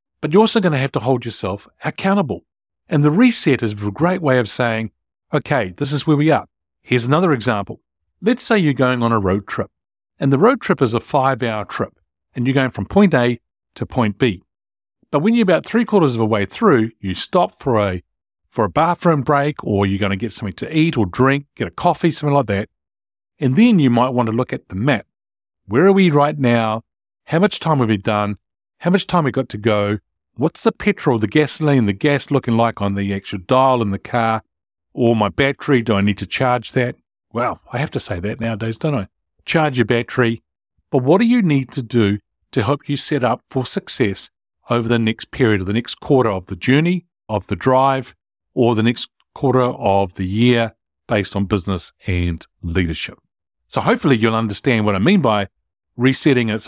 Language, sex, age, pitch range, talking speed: English, male, 50-69, 100-145 Hz, 215 wpm